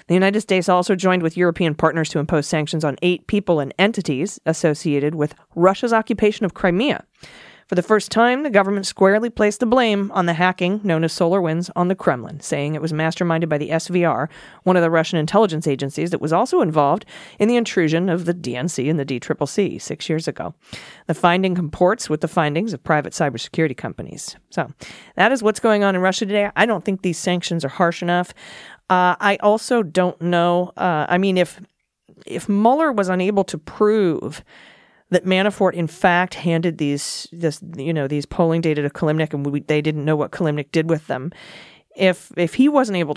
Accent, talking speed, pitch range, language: American, 195 wpm, 155-195 Hz, English